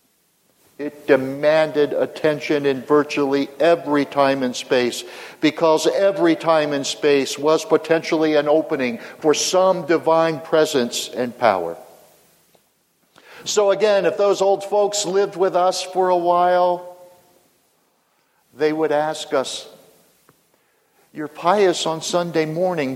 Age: 60-79